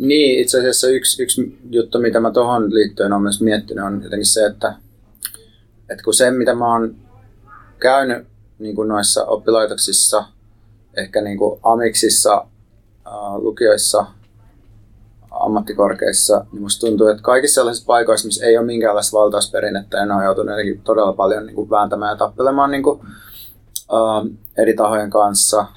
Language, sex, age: Finnish, male, 30-49